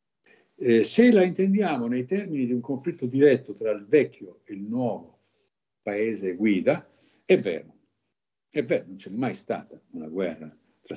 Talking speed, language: 160 wpm, Italian